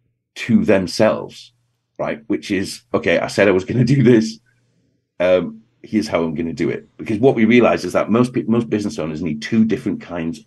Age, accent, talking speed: 40-59, British, 210 wpm